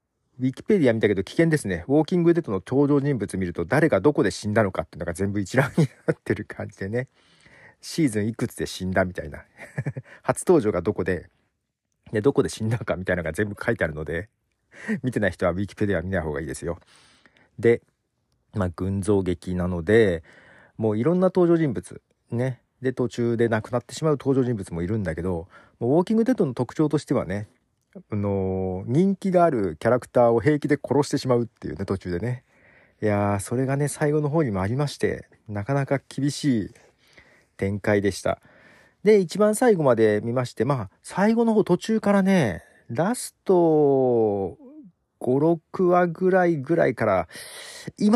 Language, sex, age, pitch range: Japanese, male, 40-59, 105-155 Hz